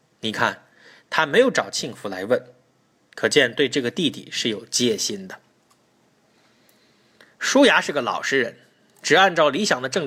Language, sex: Chinese, male